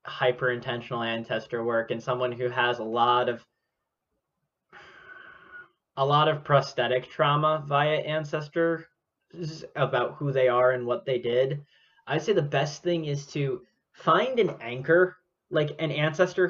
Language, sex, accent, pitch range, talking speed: English, male, American, 130-155 Hz, 140 wpm